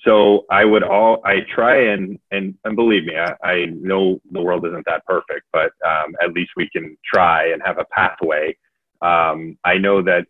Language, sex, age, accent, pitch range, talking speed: English, male, 30-49, American, 85-100 Hz, 200 wpm